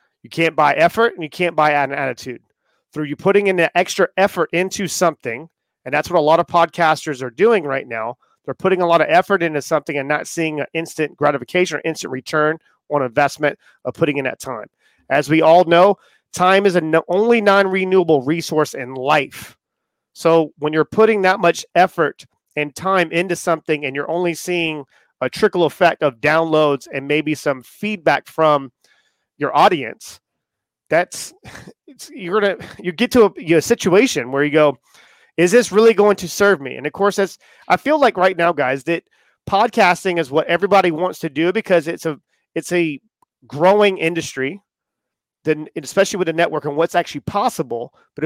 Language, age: English, 30-49